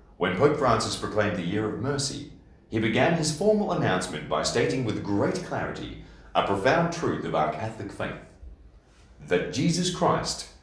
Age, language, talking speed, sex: 40-59, English, 160 wpm, male